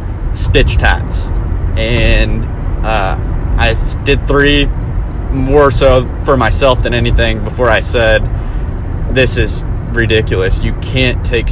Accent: American